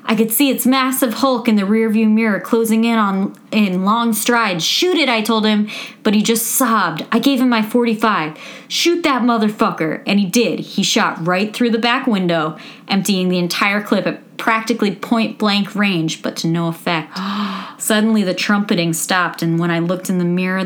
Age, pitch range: 30-49, 175-220 Hz